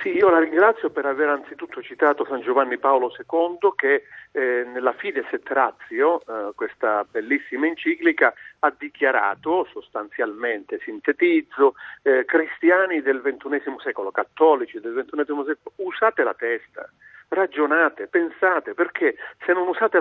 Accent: native